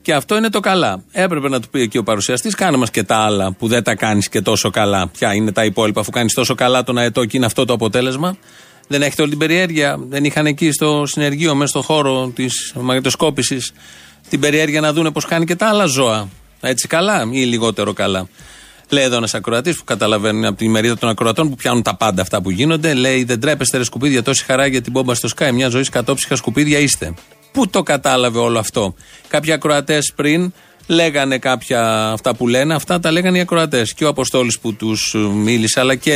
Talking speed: 220 wpm